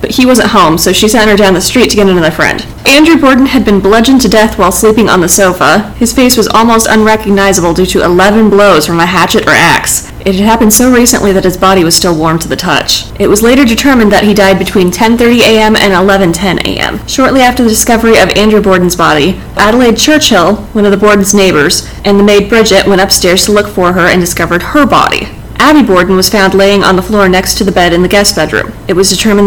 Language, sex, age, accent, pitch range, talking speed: English, female, 30-49, American, 185-220 Hz, 230 wpm